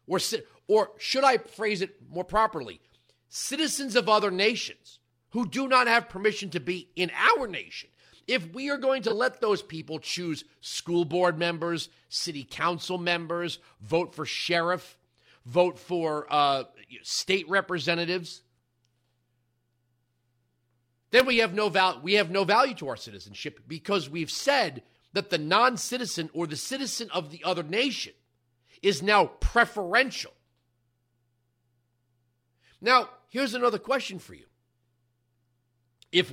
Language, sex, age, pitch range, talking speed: English, male, 40-59, 120-200 Hz, 130 wpm